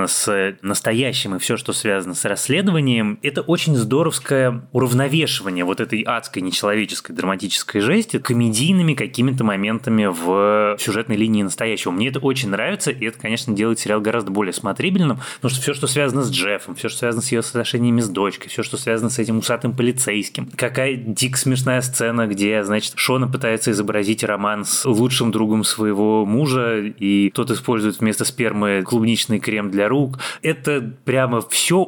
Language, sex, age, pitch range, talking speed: Russian, male, 20-39, 105-130 Hz, 160 wpm